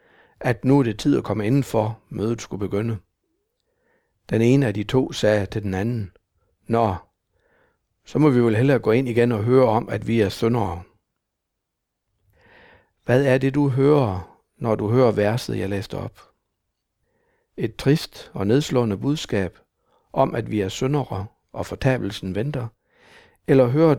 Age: 60-79